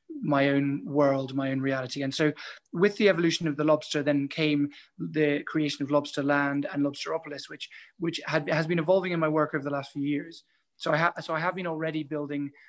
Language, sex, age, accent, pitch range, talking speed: English, male, 20-39, British, 140-155 Hz, 220 wpm